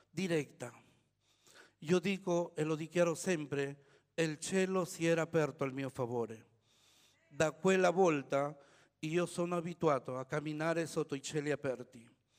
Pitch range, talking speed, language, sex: 135-175 Hz, 125 wpm, Italian, male